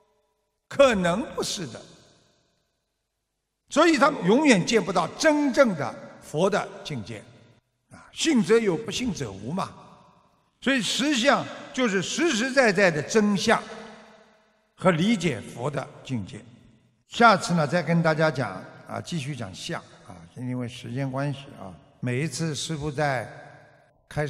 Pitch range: 130-195 Hz